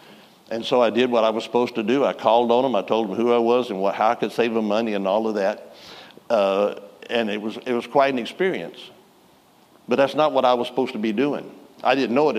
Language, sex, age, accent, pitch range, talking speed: English, male, 60-79, American, 120-165 Hz, 265 wpm